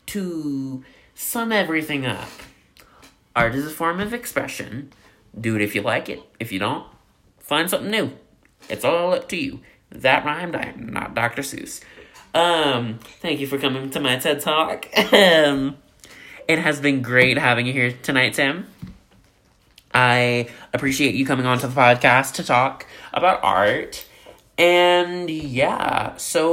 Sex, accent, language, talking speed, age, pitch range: male, American, English, 150 wpm, 20-39, 120-155 Hz